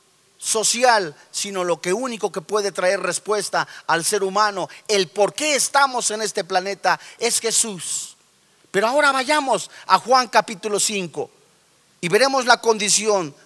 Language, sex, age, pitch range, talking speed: Spanish, male, 40-59, 190-260 Hz, 140 wpm